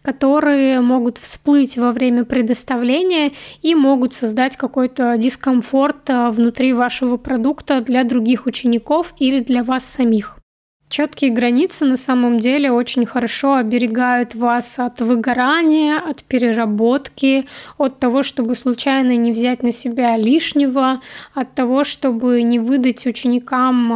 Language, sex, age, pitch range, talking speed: Russian, female, 10-29, 245-275 Hz, 125 wpm